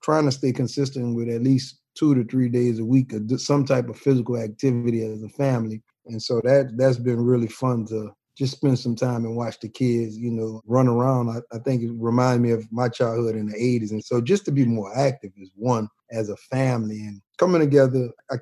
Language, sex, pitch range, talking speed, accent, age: English, male, 110-125 Hz, 230 wpm, American, 30-49